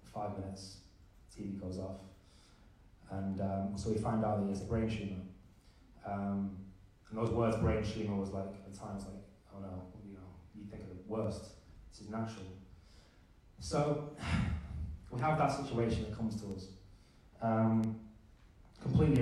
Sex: male